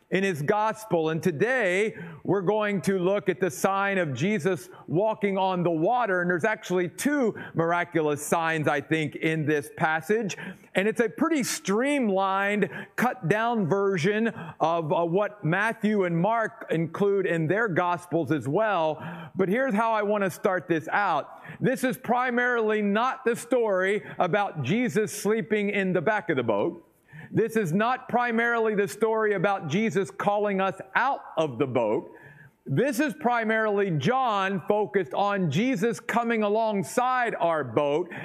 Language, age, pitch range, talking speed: English, 50-69, 170-215 Hz, 150 wpm